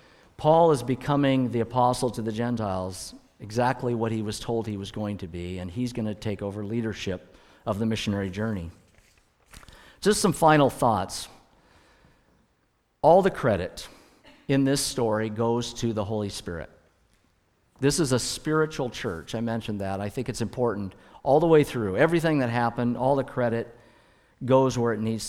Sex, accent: male, American